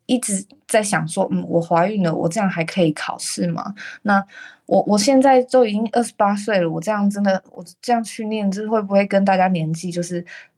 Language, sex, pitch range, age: Chinese, female, 180-240 Hz, 20-39